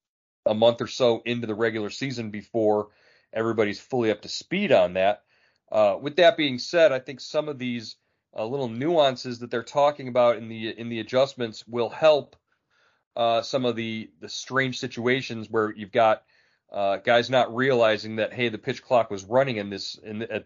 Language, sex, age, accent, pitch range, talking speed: English, male, 40-59, American, 110-130 Hz, 195 wpm